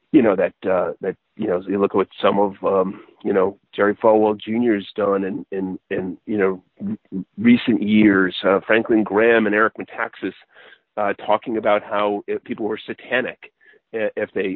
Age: 40-59